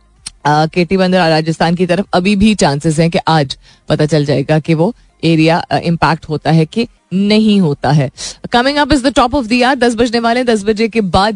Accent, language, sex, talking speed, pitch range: native, Hindi, female, 180 wpm, 160-225 Hz